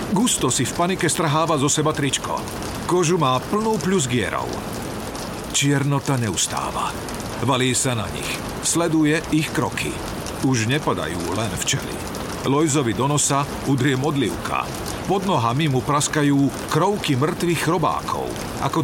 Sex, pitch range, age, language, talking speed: male, 125-160 Hz, 40-59, Slovak, 125 wpm